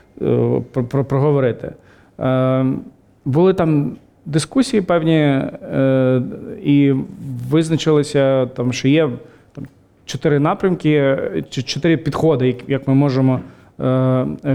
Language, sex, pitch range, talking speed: Ukrainian, male, 130-150 Hz, 100 wpm